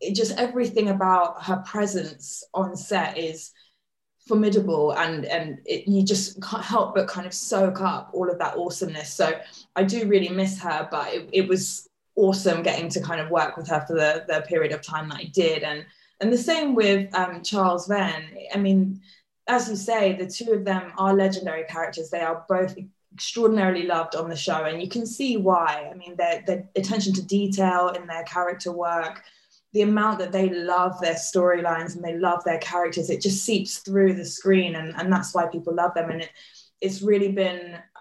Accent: British